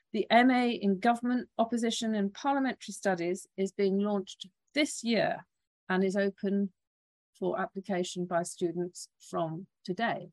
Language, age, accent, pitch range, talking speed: English, 40-59, British, 180-215 Hz, 130 wpm